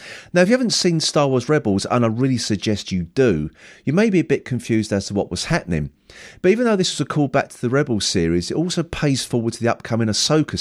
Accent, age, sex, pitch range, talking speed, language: British, 40-59, male, 95-150 Hz, 255 wpm, English